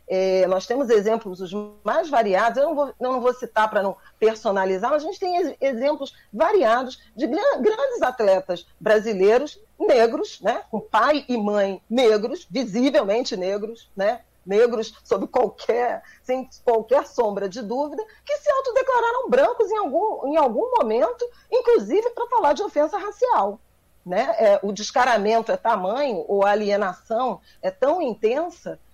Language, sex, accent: Portuguese, female, Brazilian